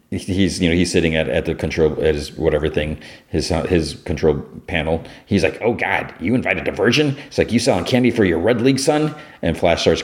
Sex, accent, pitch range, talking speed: male, American, 85-115 Hz, 220 wpm